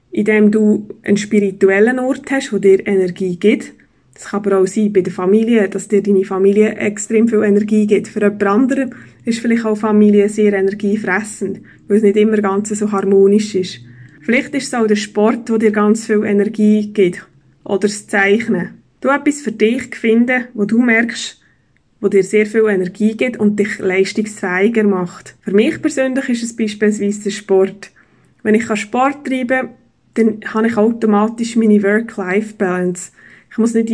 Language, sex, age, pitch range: German, female, 20-39, 200-230 Hz